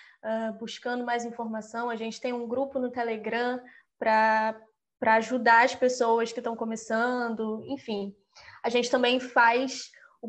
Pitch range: 230-290 Hz